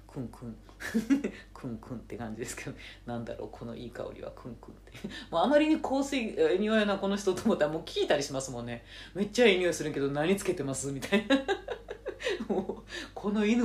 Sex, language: female, Japanese